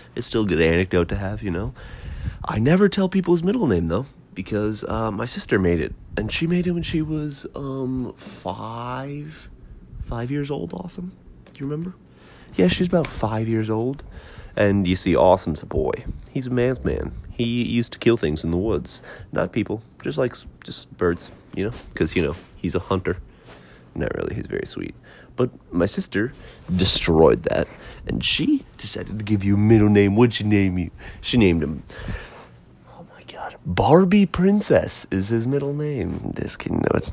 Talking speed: 185 wpm